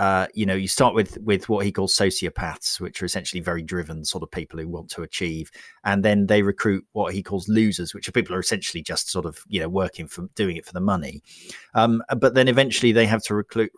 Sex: male